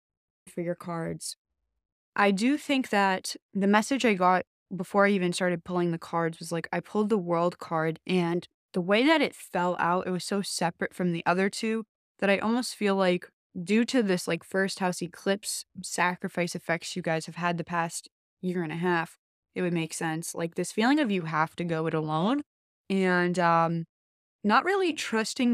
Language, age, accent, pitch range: English, 20-39, American, 170-205 Hz